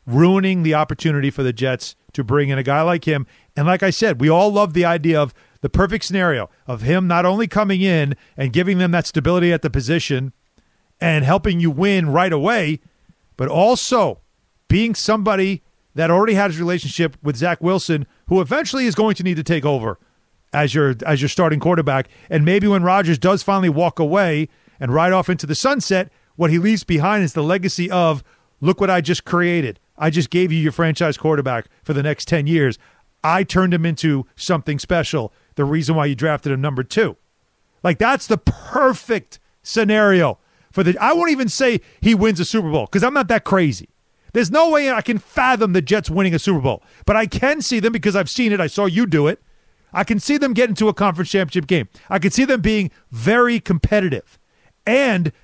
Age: 40-59